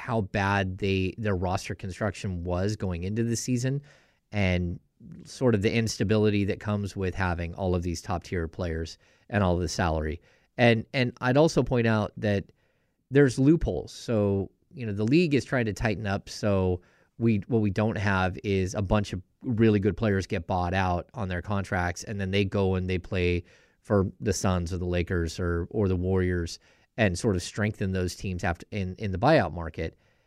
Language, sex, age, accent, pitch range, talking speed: English, male, 30-49, American, 90-115 Hz, 190 wpm